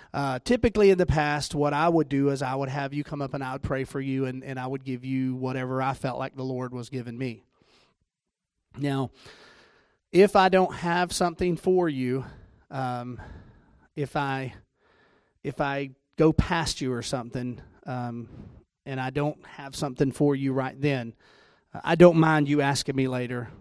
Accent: American